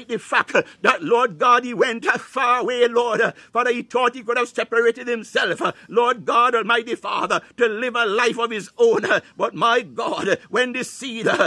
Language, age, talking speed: English, 60-79, 185 wpm